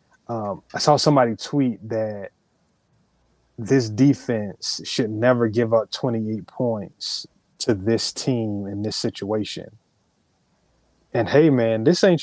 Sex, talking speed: male, 125 wpm